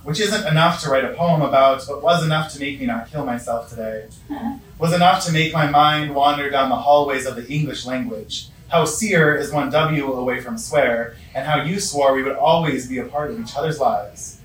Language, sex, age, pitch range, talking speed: English, male, 20-39, 135-160 Hz, 225 wpm